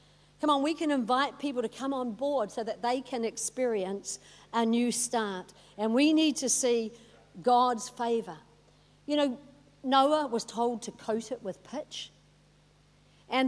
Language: English